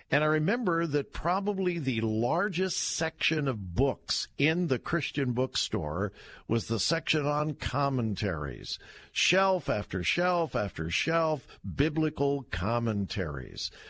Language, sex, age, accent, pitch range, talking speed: English, male, 50-69, American, 115-170 Hz, 110 wpm